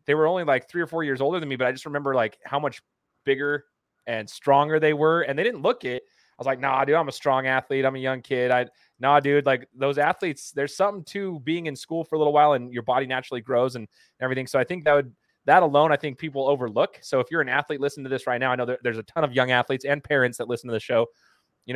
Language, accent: English, American